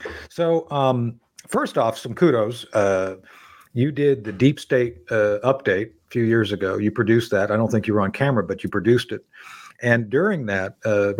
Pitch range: 105-125 Hz